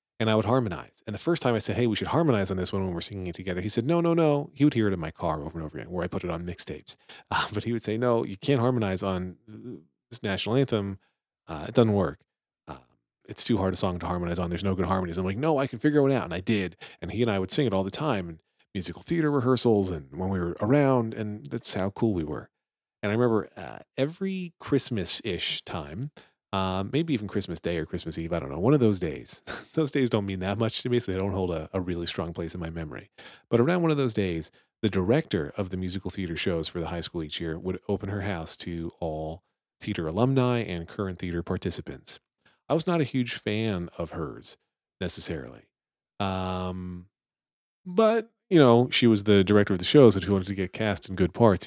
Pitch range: 90-120 Hz